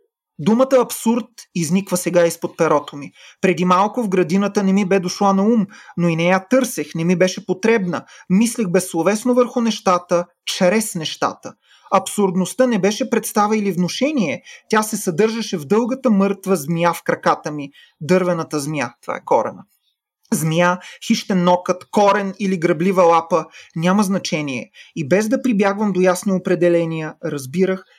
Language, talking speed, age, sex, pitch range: Bulgarian, 150 wpm, 30-49, male, 170-205 Hz